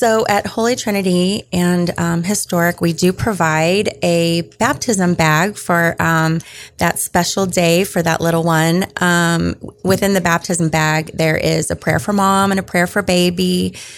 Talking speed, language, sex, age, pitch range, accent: 165 wpm, English, female, 30-49, 160-180 Hz, American